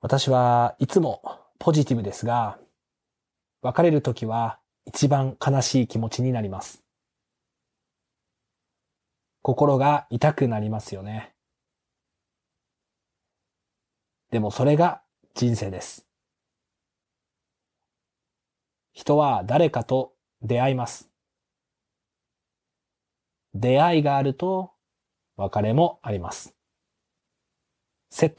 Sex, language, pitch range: male, Japanese, 110-140 Hz